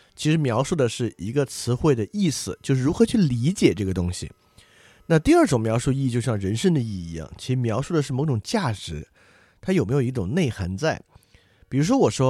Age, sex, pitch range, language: 30-49, male, 100-140 Hz, Chinese